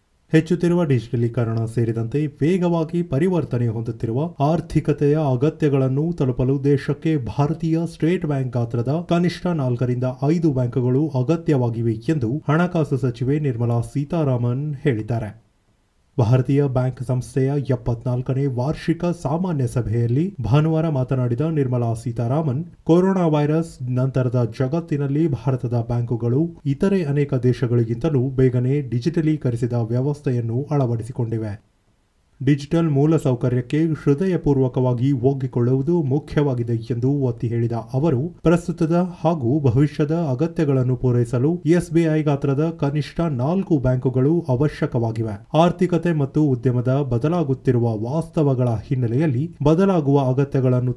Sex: male